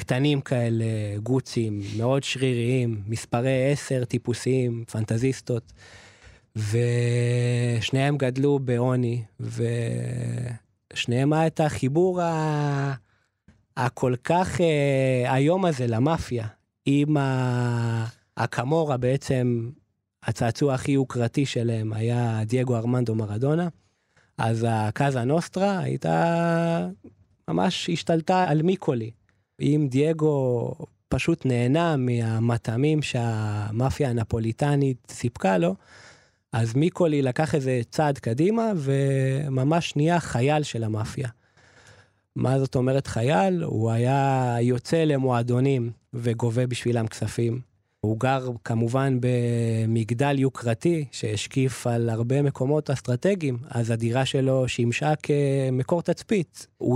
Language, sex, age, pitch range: Hebrew, male, 20-39, 115-145 Hz